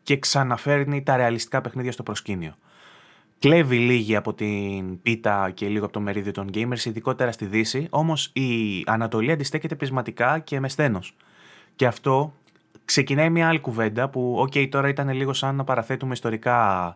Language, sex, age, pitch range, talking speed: Greek, male, 20-39, 110-135 Hz, 160 wpm